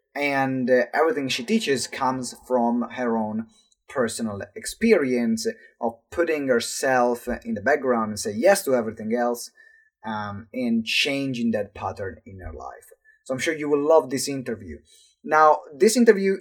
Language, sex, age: English, male, 20-39